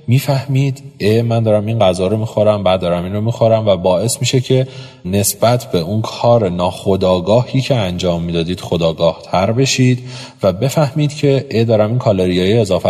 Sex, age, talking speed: male, 30-49, 180 wpm